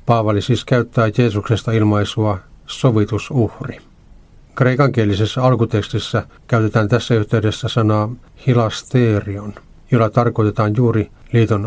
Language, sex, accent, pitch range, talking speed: Finnish, male, native, 105-120 Hz, 85 wpm